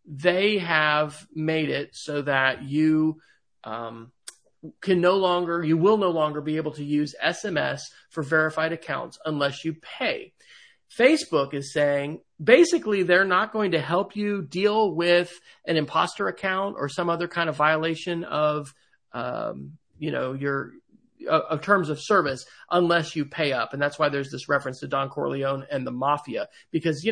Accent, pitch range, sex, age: American, 150-210 Hz, male, 40-59